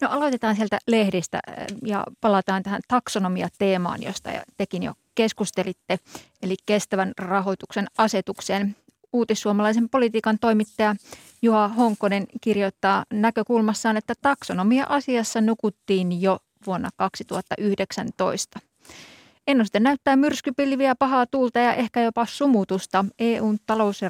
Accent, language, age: native, Finnish, 20-39